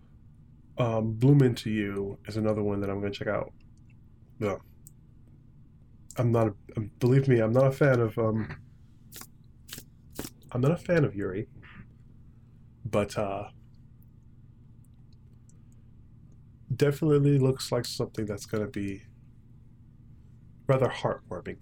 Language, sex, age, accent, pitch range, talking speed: English, male, 20-39, American, 115-125 Hz, 120 wpm